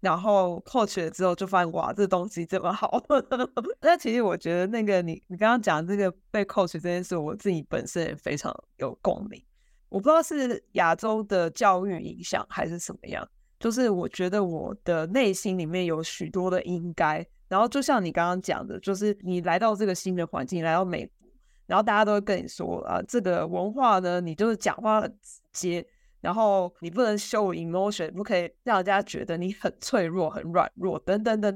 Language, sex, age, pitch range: Chinese, female, 20-39, 175-215 Hz